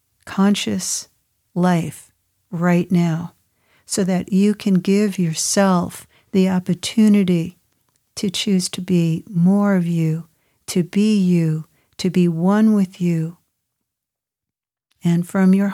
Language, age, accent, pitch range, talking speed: English, 60-79, American, 170-190 Hz, 115 wpm